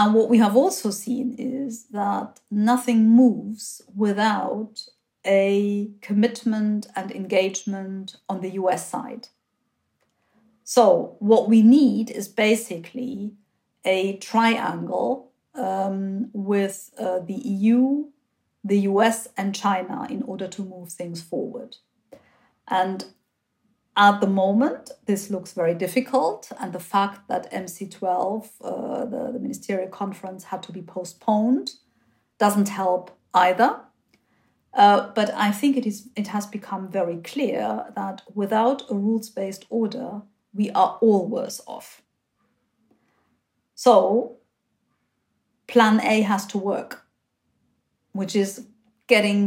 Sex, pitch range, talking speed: female, 195-235 Hz, 115 wpm